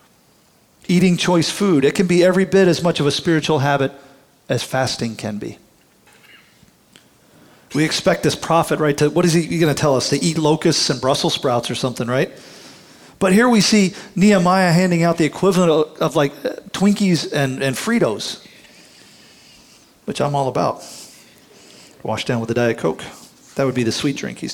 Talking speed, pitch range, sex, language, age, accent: 180 wpm, 135-180 Hz, male, English, 40-59, American